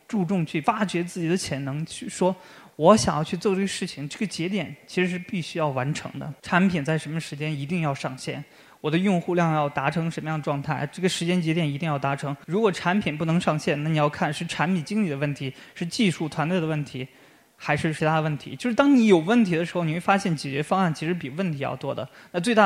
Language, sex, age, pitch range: Chinese, male, 20-39, 145-180 Hz